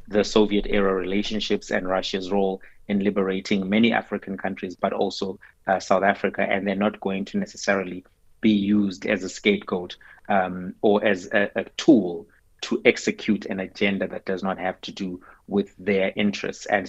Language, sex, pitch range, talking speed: English, male, 95-110 Hz, 170 wpm